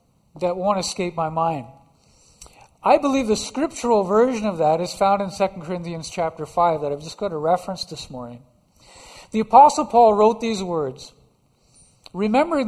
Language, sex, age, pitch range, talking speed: English, male, 50-69, 170-235 Hz, 160 wpm